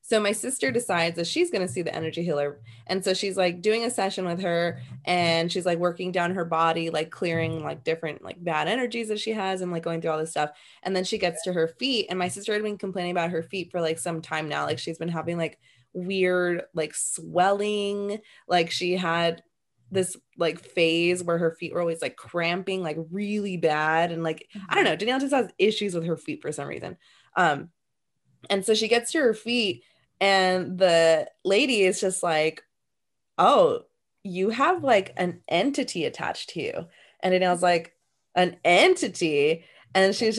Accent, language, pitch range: American, English, 165-195 Hz